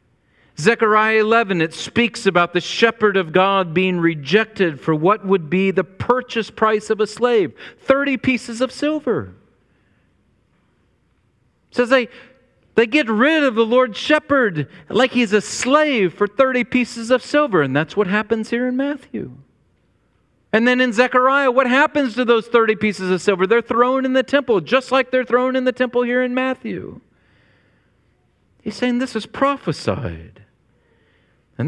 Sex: male